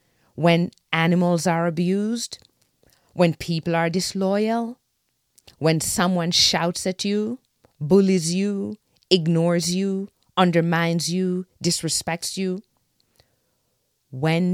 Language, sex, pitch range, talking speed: English, female, 160-220 Hz, 90 wpm